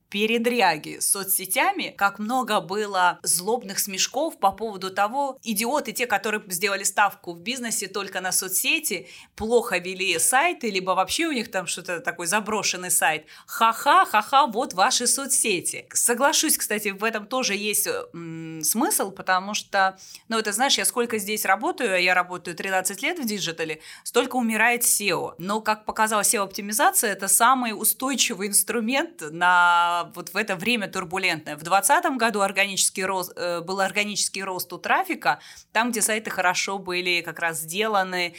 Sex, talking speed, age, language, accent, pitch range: female, 150 wpm, 20-39, Russian, native, 180-225 Hz